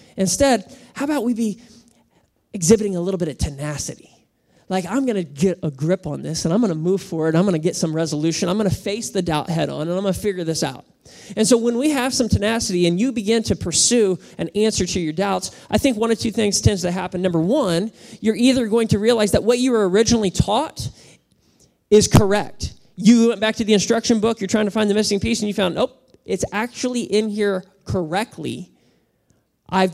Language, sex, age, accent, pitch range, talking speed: English, male, 20-39, American, 170-220 Hz, 225 wpm